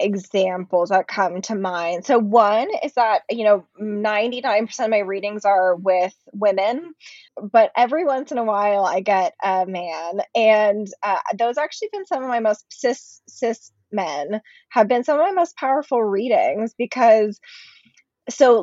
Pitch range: 195-240 Hz